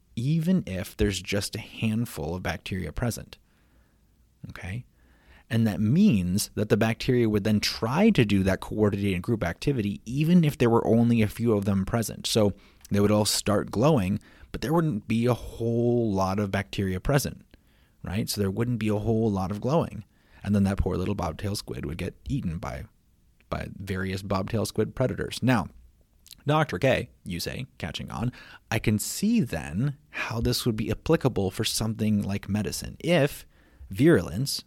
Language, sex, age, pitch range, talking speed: English, male, 30-49, 95-115 Hz, 170 wpm